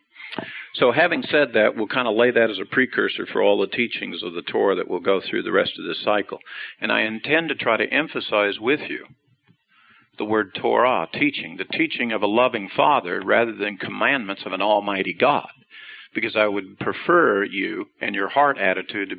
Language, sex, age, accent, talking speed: English, male, 50-69, American, 200 wpm